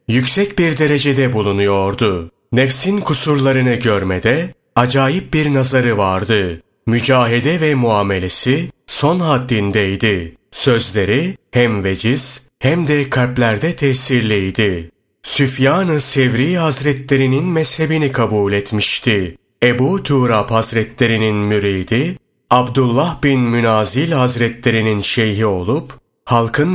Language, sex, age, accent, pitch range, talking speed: Turkish, male, 30-49, native, 105-140 Hz, 90 wpm